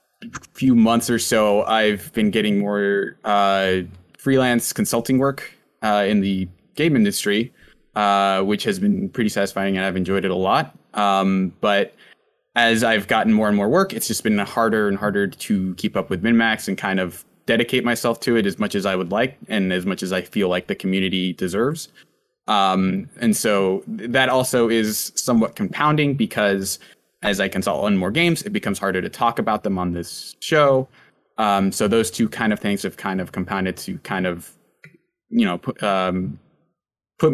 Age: 20-39